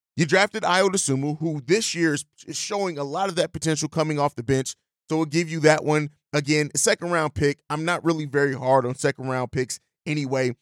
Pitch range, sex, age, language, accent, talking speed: 140-170 Hz, male, 30-49, English, American, 210 wpm